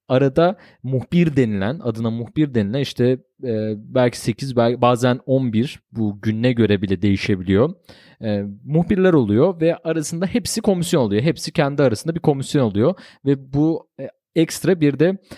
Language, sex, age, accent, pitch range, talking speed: Turkish, male, 30-49, native, 110-155 Hz, 150 wpm